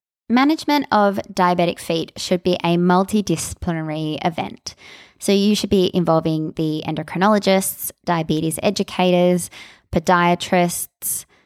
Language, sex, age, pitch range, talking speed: English, female, 20-39, 160-200 Hz, 100 wpm